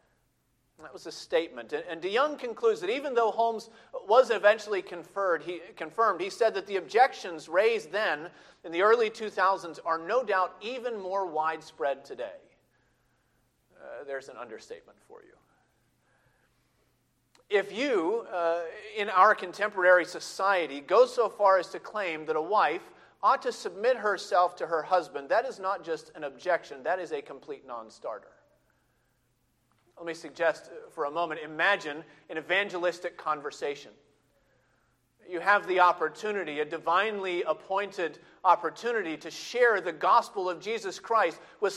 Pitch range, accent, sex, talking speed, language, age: 170-265 Hz, American, male, 145 wpm, English, 40-59